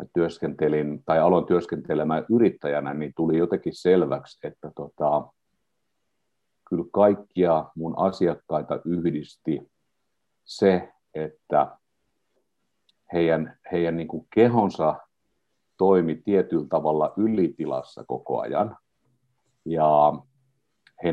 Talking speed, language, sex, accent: 90 wpm, Finnish, male, native